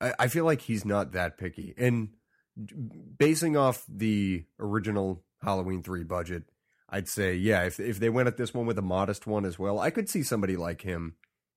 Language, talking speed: English, 190 wpm